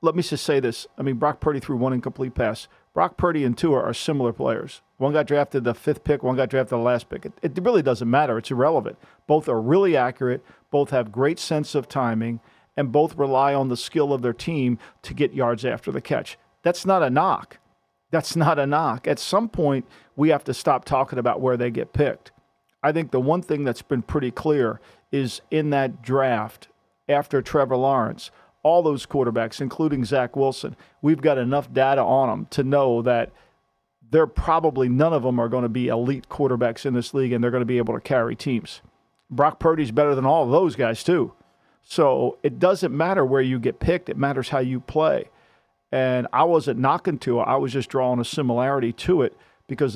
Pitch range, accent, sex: 125-155 Hz, American, male